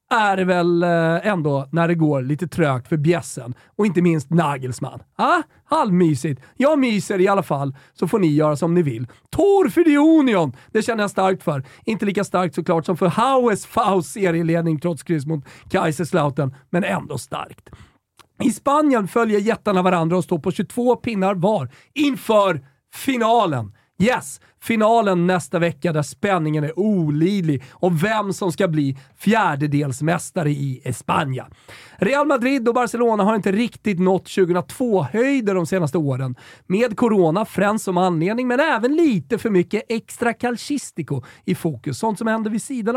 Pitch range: 155-225 Hz